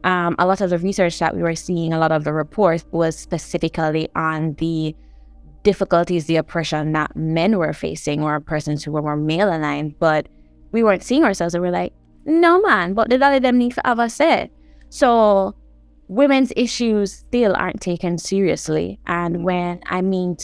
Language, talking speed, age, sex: English, 190 wpm, 20-39, female